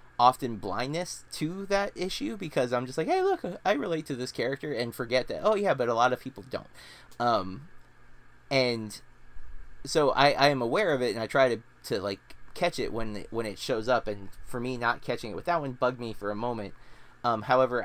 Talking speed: 220 wpm